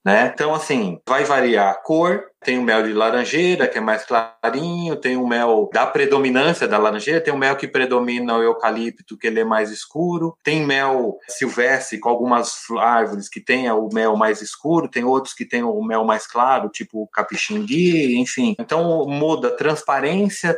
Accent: Brazilian